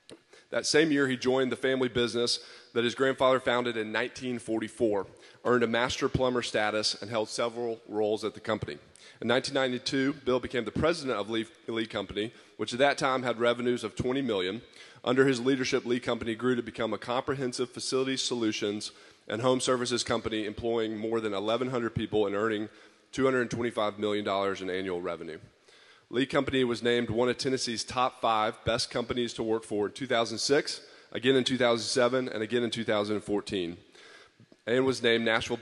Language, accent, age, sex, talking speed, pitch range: English, American, 40-59, male, 170 wpm, 110-130 Hz